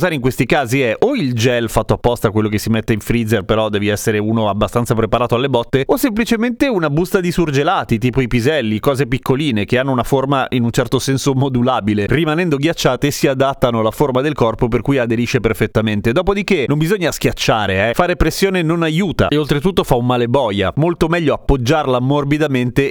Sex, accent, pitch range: male, native, 120-160 Hz